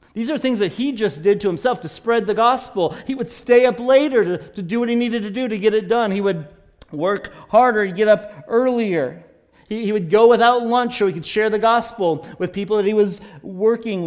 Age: 40-59